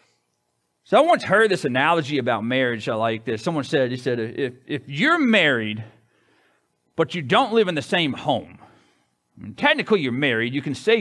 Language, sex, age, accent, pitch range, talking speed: English, male, 40-59, American, 125-185 Hz, 180 wpm